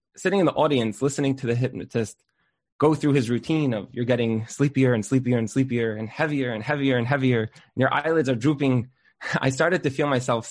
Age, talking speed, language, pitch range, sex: 20-39, 210 wpm, English, 125-150 Hz, male